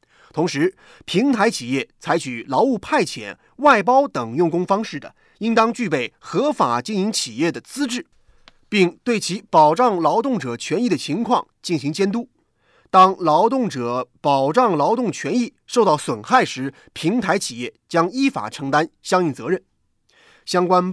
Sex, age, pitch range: male, 30-49, 165-255 Hz